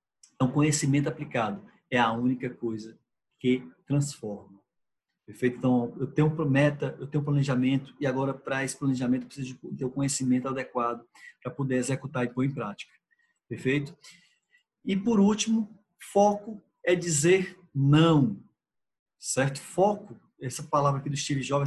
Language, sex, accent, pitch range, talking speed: Portuguese, male, Brazilian, 135-180 Hz, 150 wpm